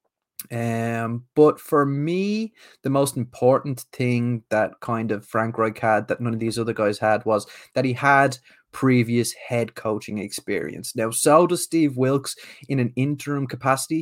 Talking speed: 165 wpm